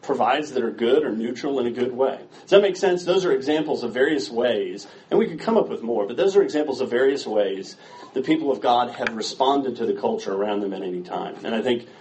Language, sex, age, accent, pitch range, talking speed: English, male, 40-59, American, 125-180 Hz, 255 wpm